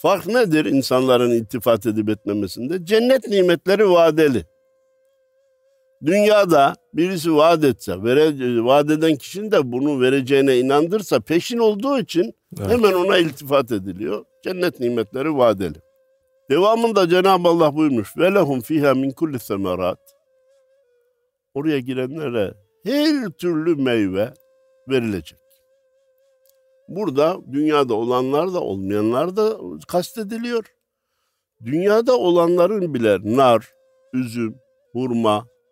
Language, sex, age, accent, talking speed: Turkish, male, 60-79, native, 95 wpm